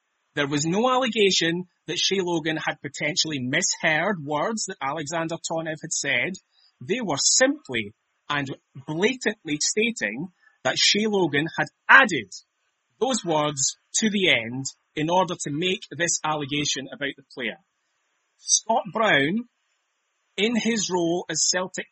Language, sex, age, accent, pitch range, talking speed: English, male, 30-49, British, 155-220 Hz, 130 wpm